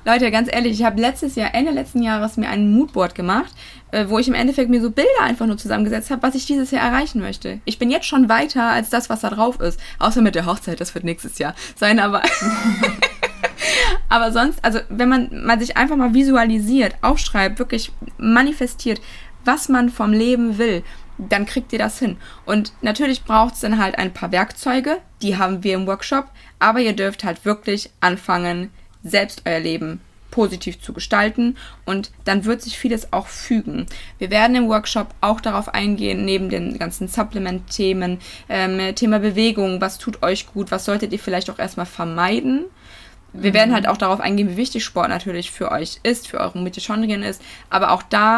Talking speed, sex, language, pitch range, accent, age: 190 wpm, female, German, 190-230 Hz, German, 20-39